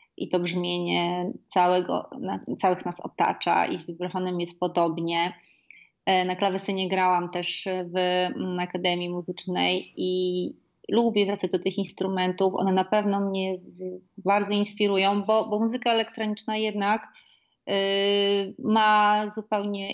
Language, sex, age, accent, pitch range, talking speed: Polish, female, 30-49, native, 180-210 Hz, 110 wpm